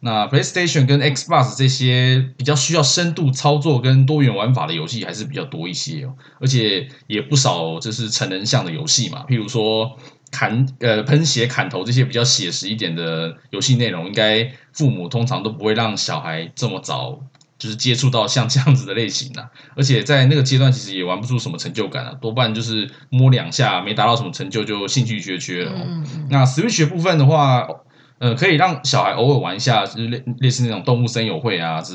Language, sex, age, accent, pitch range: Chinese, male, 20-39, native, 110-145 Hz